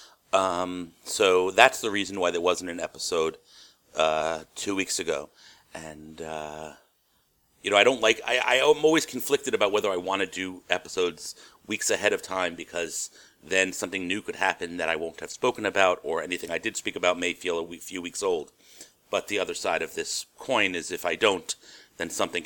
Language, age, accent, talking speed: English, 40-59, American, 195 wpm